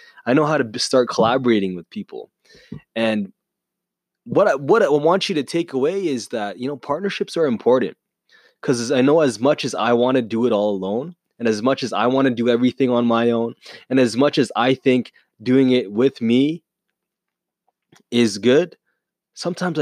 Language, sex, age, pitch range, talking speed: English, male, 20-39, 120-170 Hz, 190 wpm